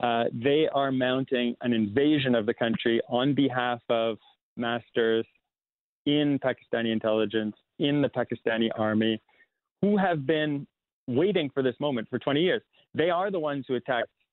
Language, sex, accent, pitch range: English, male, American, 115-150 Hz